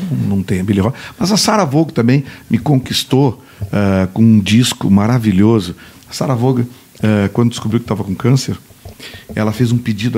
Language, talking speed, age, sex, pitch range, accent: Portuguese, 170 wpm, 60-79, male, 100-120 Hz, Brazilian